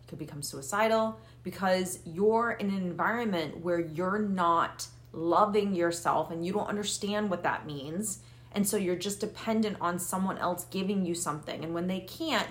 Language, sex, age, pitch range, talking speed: English, female, 30-49, 165-200 Hz, 170 wpm